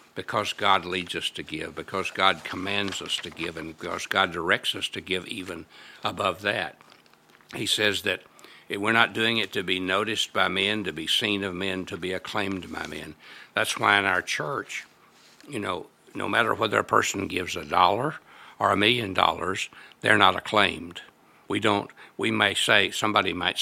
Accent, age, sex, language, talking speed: American, 60-79, male, English, 185 wpm